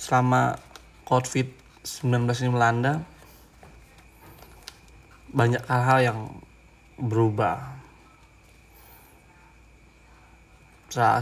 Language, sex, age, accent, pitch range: Indonesian, male, 20-39, native, 115-130 Hz